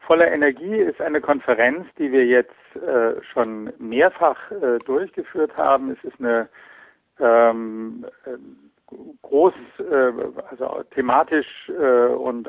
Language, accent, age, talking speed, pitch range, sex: German, German, 60-79, 115 wpm, 120-170 Hz, male